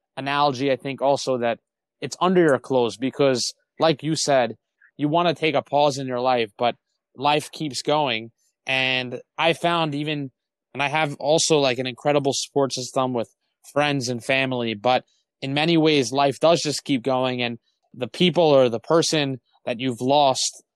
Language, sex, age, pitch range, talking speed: English, male, 20-39, 130-155 Hz, 175 wpm